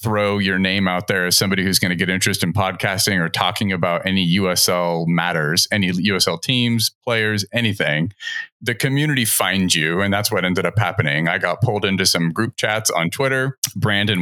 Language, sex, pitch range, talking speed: English, male, 95-115 Hz, 190 wpm